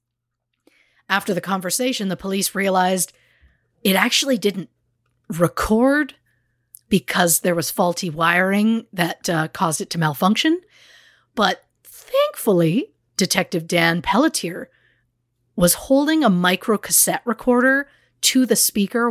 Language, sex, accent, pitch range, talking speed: English, female, American, 165-200 Hz, 110 wpm